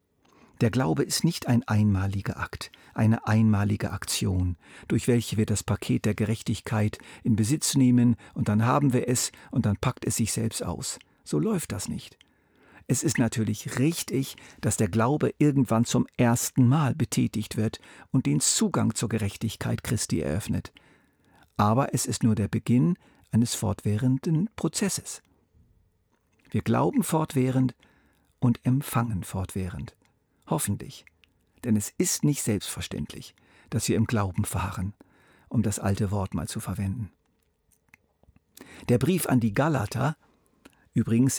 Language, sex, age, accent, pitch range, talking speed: German, male, 50-69, German, 105-130 Hz, 140 wpm